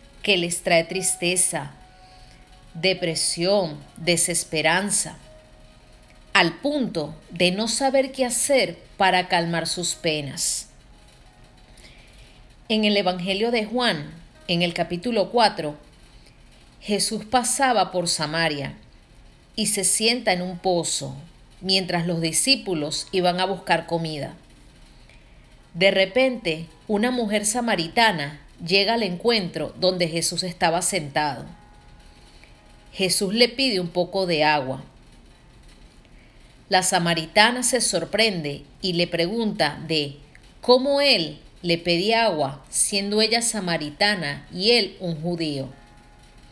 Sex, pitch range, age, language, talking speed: female, 160-205 Hz, 40-59, Spanish, 105 wpm